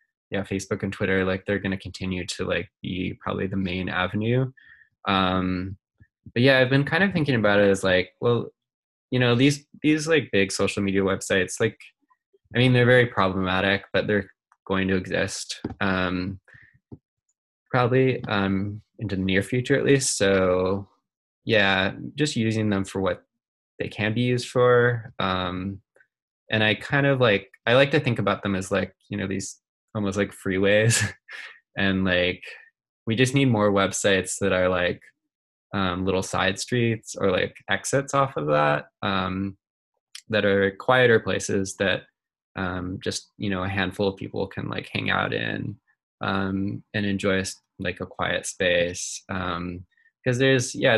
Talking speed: 165 wpm